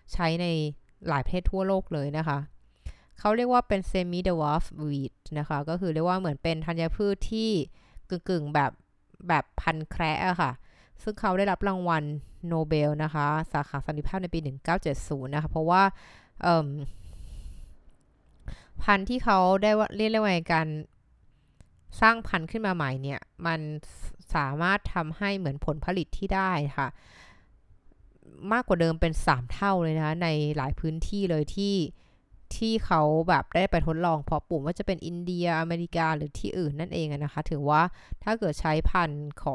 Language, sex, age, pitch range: Thai, female, 20-39, 150-185 Hz